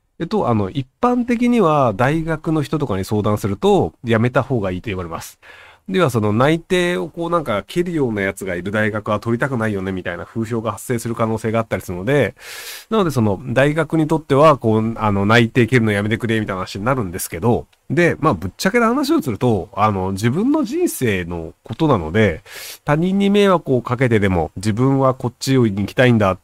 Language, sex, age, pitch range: Japanese, male, 30-49, 105-150 Hz